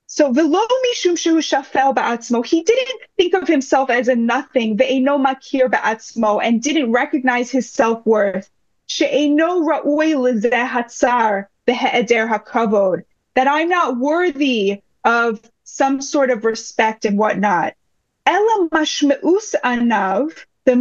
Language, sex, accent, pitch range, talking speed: English, female, American, 250-345 Hz, 75 wpm